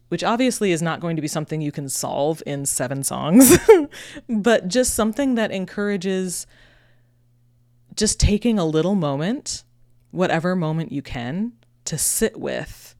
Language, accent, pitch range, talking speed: English, American, 135-155 Hz, 145 wpm